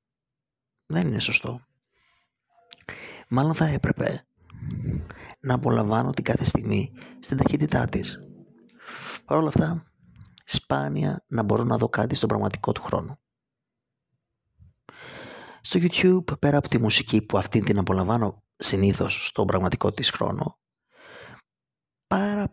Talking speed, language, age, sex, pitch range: 115 wpm, Greek, 30-49, male, 105-145 Hz